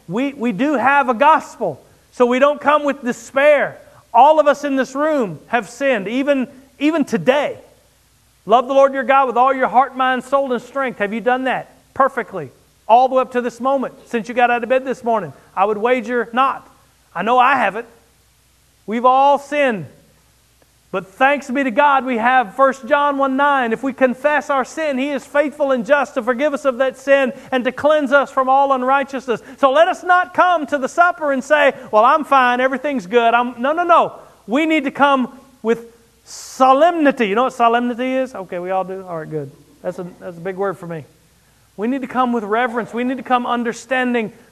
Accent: American